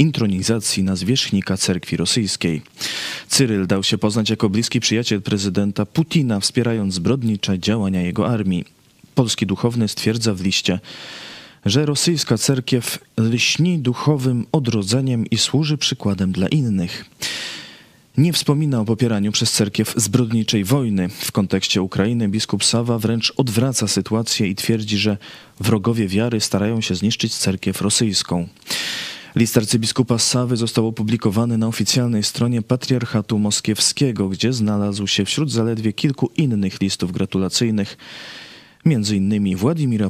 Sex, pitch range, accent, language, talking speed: male, 100-125 Hz, native, Polish, 125 wpm